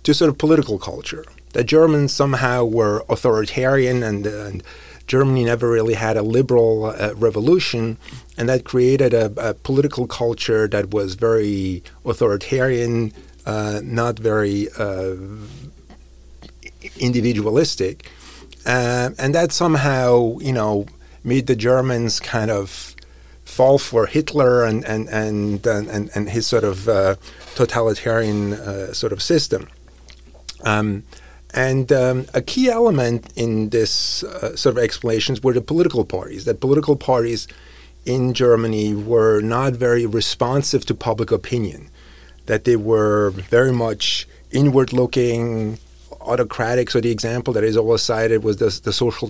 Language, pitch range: English, 105-130 Hz